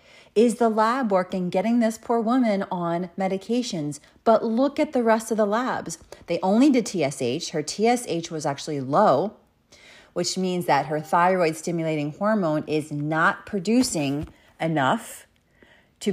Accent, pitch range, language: American, 155-210 Hz, English